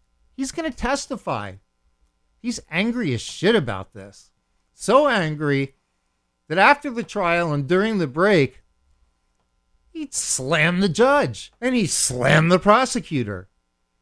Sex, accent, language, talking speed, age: male, American, English, 125 wpm, 50-69